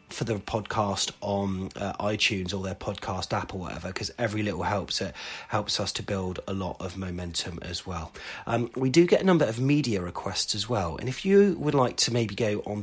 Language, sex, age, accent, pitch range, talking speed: English, male, 30-49, British, 100-130 Hz, 220 wpm